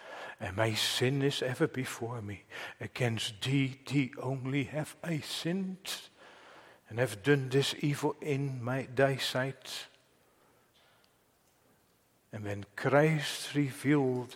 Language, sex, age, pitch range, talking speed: English, male, 60-79, 115-150 Hz, 110 wpm